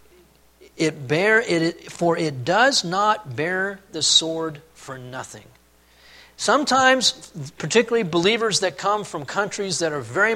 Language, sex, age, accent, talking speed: English, male, 40-59, American, 125 wpm